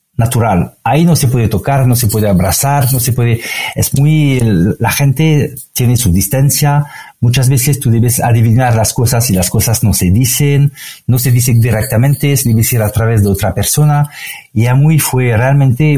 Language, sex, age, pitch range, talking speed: Spanish, male, 50-69, 100-140 Hz, 185 wpm